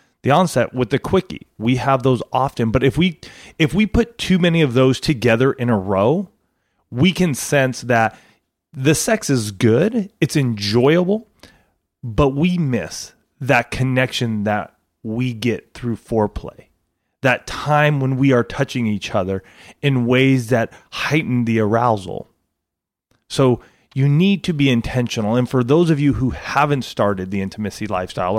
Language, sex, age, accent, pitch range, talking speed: English, male, 30-49, American, 110-140 Hz, 155 wpm